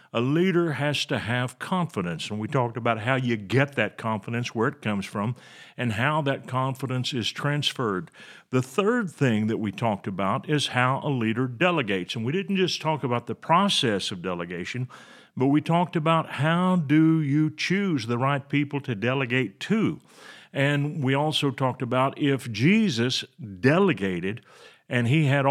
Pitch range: 115-150 Hz